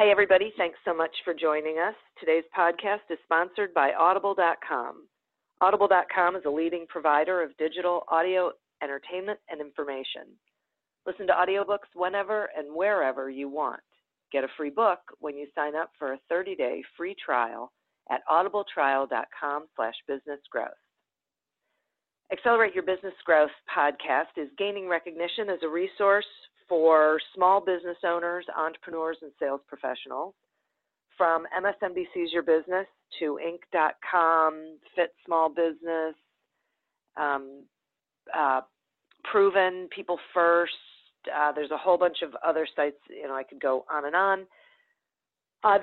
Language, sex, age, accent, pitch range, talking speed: English, female, 40-59, American, 150-185 Hz, 130 wpm